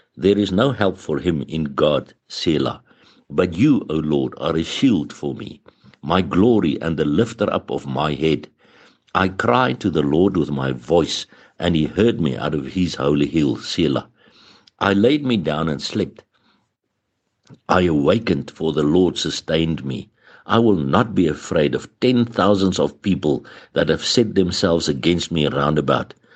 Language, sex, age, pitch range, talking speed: English, male, 60-79, 75-95 Hz, 175 wpm